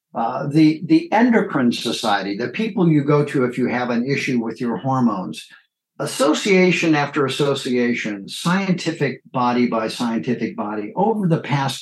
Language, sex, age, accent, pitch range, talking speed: English, male, 50-69, American, 125-165 Hz, 145 wpm